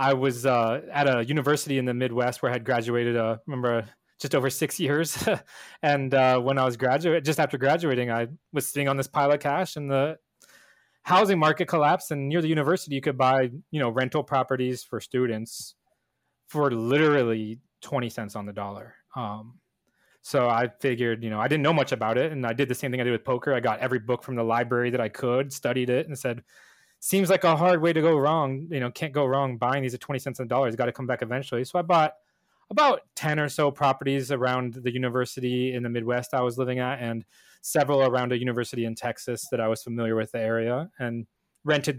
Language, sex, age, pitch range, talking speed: English, male, 20-39, 120-145 Hz, 225 wpm